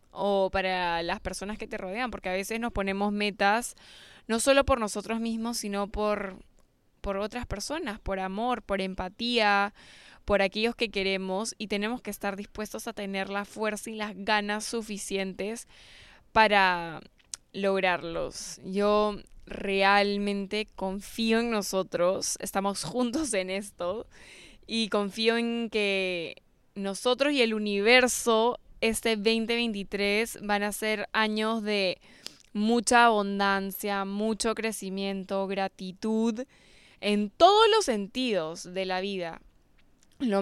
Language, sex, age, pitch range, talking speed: Spanish, female, 10-29, 195-225 Hz, 125 wpm